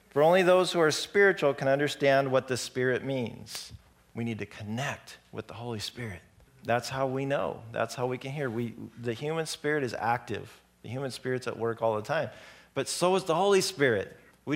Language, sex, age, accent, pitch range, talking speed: English, male, 40-59, American, 115-140 Hz, 205 wpm